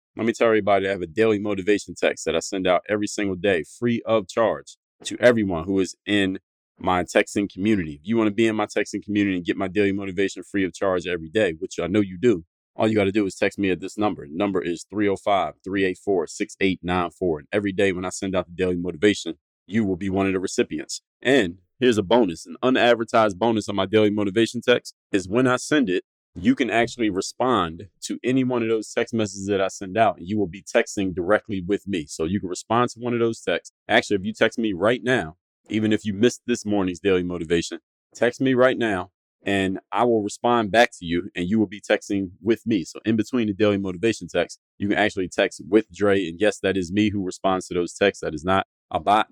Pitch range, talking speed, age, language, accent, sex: 95-110 Hz, 235 wpm, 30-49, English, American, male